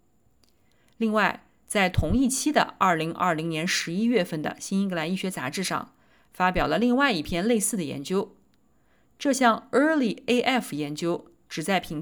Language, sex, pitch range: Chinese, female, 170-245 Hz